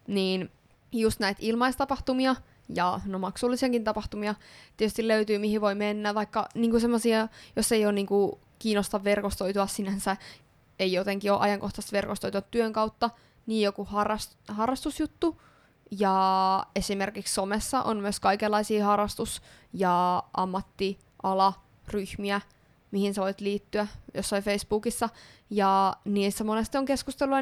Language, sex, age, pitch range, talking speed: Finnish, female, 20-39, 195-230 Hz, 115 wpm